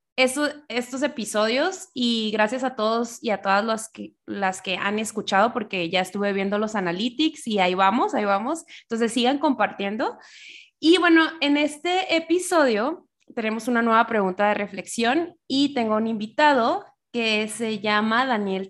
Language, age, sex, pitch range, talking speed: Spanish, 20-39, female, 195-245 Hz, 155 wpm